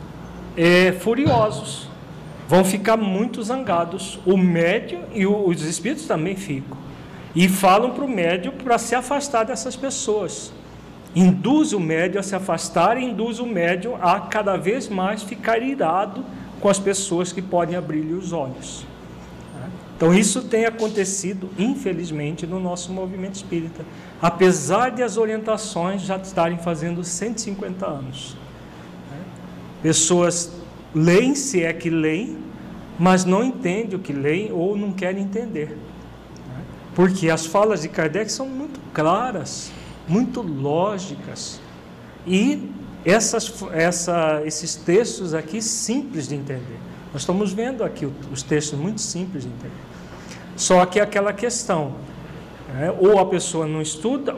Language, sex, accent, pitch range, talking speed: Portuguese, male, Brazilian, 170-220 Hz, 130 wpm